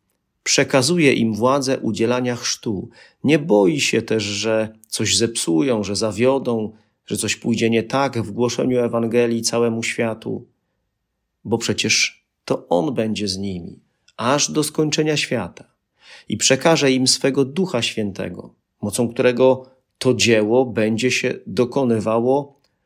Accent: native